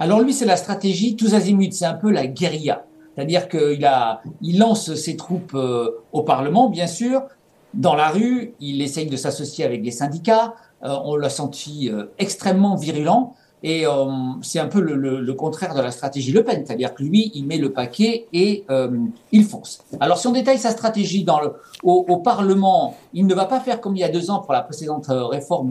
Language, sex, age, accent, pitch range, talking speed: French, male, 50-69, French, 145-215 Hz, 205 wpm